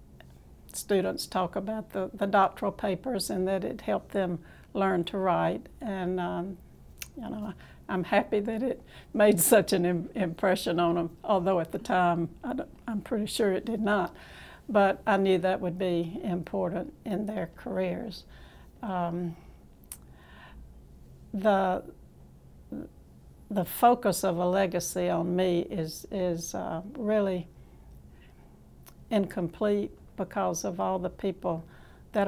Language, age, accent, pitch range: English, 60-79, American, 170-205 Hz